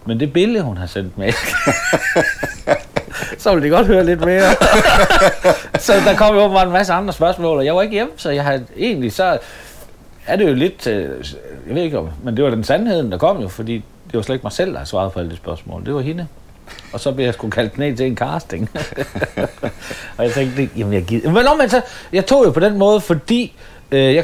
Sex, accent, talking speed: male, native, 235 wpm